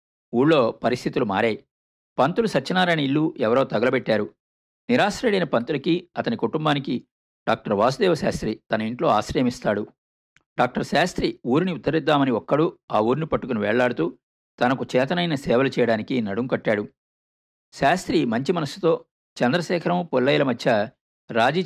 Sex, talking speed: male, 110 wpm